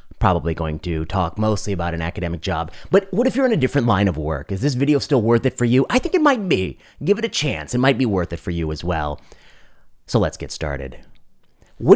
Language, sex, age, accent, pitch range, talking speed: English, male, 30-49, American, 85-125 Hz, 250 wpm